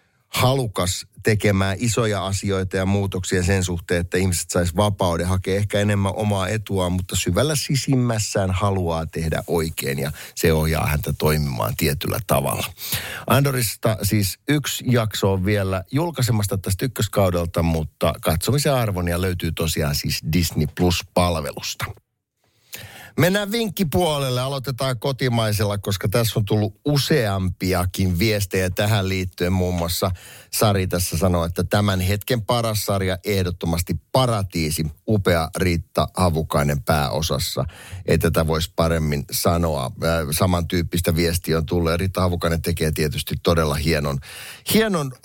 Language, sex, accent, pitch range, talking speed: Finnish, male, native, 85-110 Hz, 125 wpm